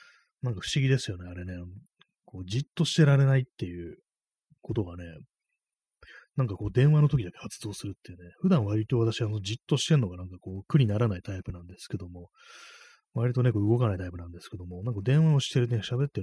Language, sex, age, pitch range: Japanese, male, 30-49, 95-130 Hz